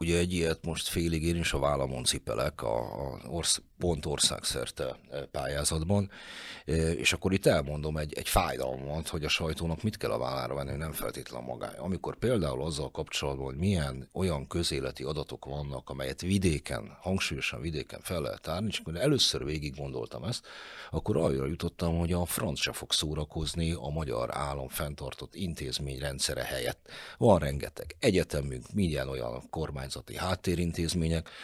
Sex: male